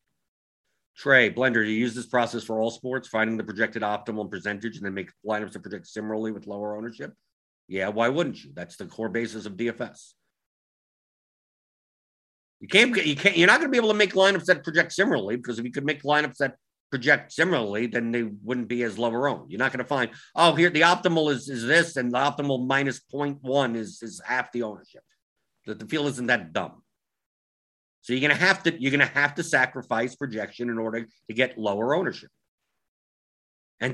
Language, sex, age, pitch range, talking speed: English, male, 50-69, 110-145 Hz, 200 wpm